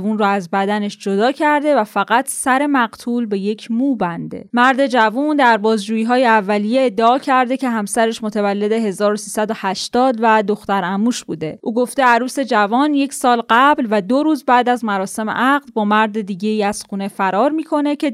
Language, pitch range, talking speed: Persian, 205-265 Hz, 170 wpm